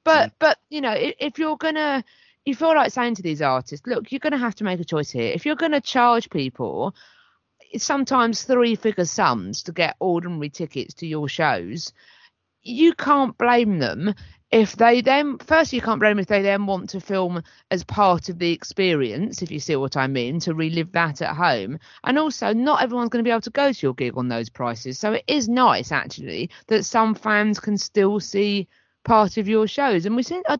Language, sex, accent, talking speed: English, female, British, 220 wpm